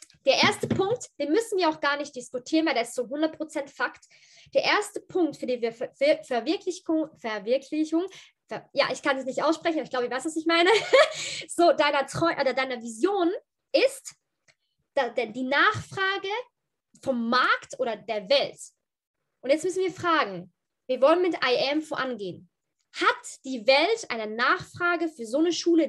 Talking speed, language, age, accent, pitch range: 175 wpm, German, 20-39, German, 250-340 Hz